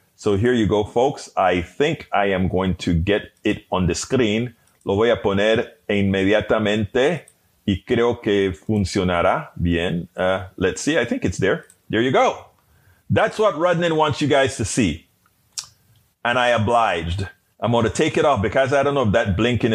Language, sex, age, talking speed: English, male, 30-49, 180 wpm